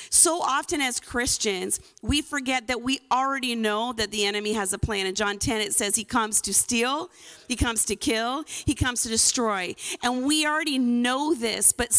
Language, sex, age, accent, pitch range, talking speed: English, female, 40-59, American, 245-310 Hz, 195 wpm